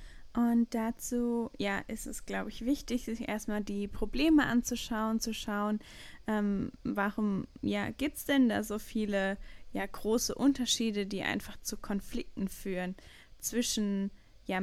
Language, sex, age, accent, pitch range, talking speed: German, female, 10-29, German, 195-235 Hz, 140 wpm